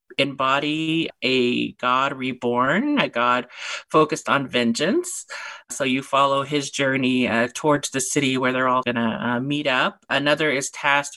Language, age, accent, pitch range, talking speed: English, 30-49, American, 125-145 Hz, 150 wpm